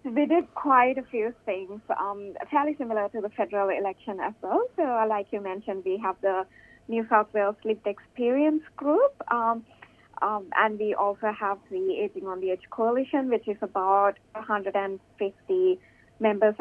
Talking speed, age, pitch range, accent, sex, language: 165 wpm, 20-39, 200-240 Hz, Indian, female, English